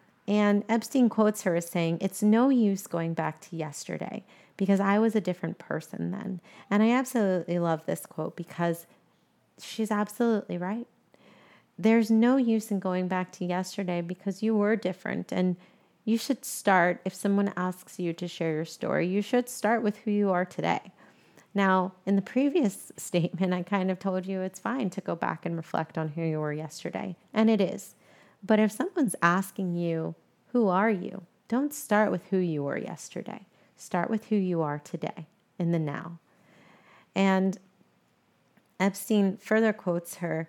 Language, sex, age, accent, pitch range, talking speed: English, female, 30-49, American, 175-215 Hz, 170 wpm